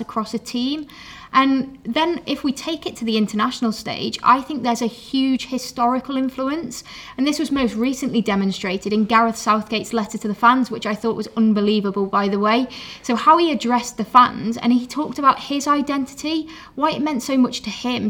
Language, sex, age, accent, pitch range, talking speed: English, female, 20-39, British, 220-265 Hz, 200 wpm